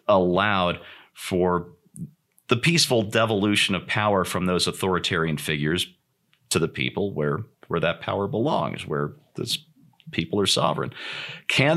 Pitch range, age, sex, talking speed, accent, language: 90-135 Hz, 40-59, male, 130 wpm, American, English